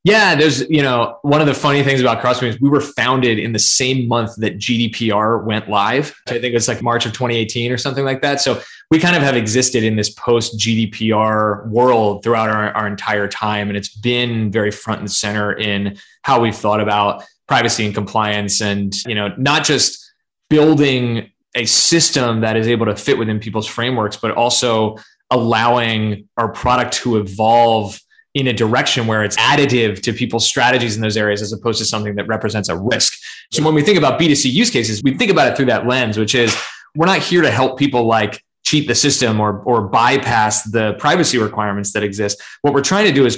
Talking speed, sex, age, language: 205 wpm, male, 20-39, English